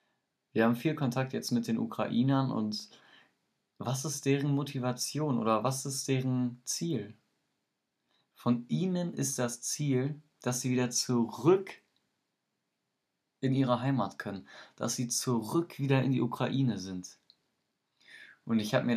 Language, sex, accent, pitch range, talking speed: German, male, German, 115-135 Hz, 135 wpm